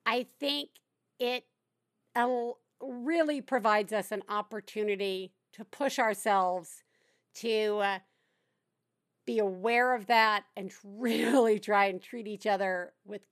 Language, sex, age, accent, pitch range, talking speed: English, female, 50-69, American, 210-290 Hz, 110 wpm